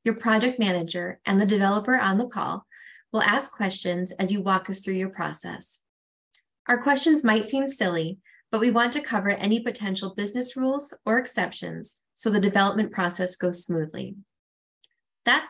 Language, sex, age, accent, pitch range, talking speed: English, female, 20-39, American, 185-240 Hz, 165 wpm